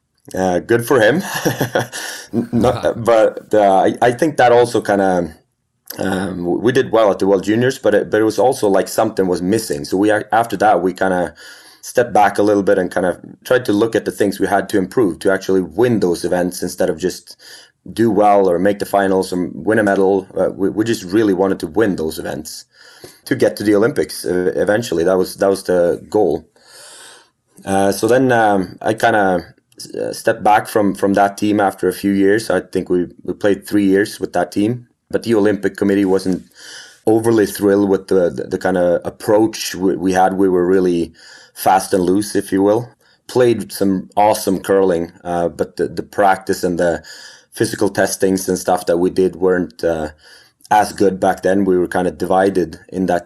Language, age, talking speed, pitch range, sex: English, 30-49, 205 wpm, 90-100 Hz, male